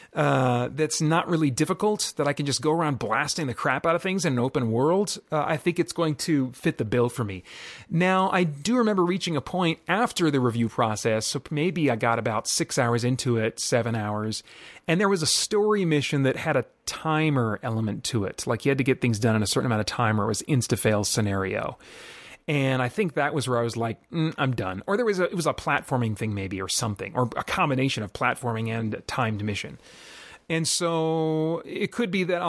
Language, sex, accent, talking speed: English, male, American, 230 wpm